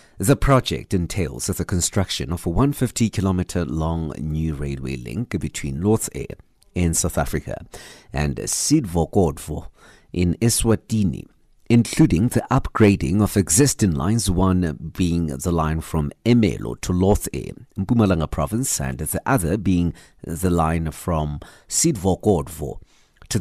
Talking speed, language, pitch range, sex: 120 wpm, English, 85-120 Hz, male